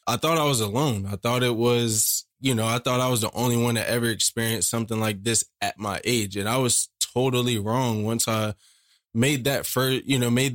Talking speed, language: 230 wpm, English